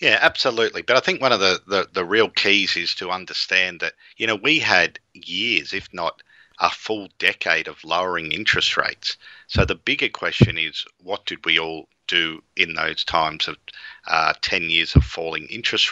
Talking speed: 185 wpm